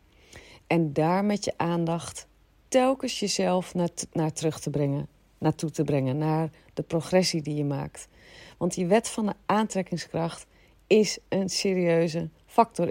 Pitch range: 160-200 Hz